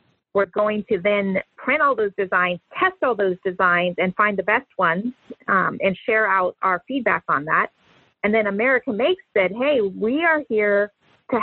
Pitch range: 185-210 Hz